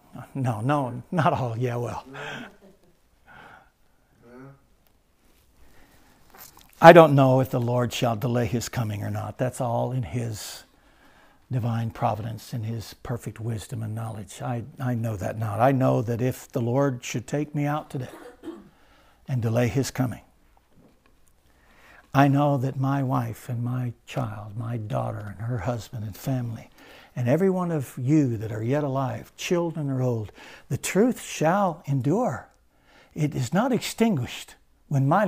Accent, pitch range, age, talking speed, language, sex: American, 115-155 Hz, 60-79, 150 wpm, English, male